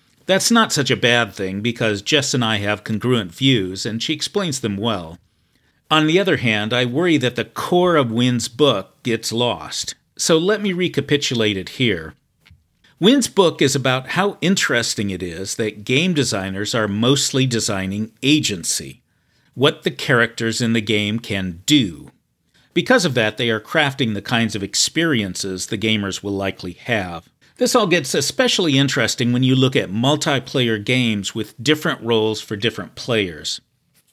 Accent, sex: American, male